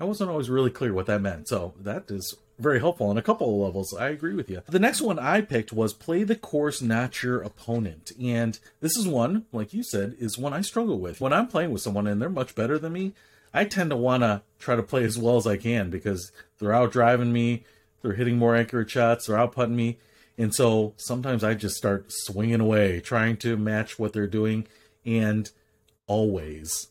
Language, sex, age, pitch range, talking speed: English, male, 40-59, 105-130 Hz, 225 wpm